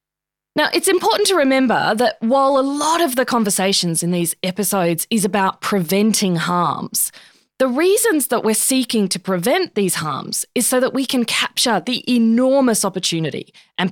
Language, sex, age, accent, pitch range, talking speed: English, female, 20-39, Australian, 185-250 Hz, 165 wpm